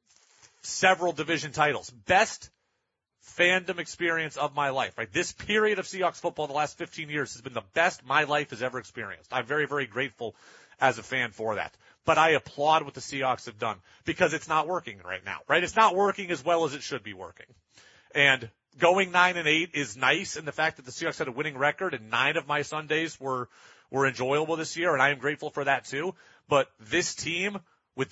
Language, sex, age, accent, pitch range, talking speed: English, male, 30-49, American, 135-175 Hz, 215 wpm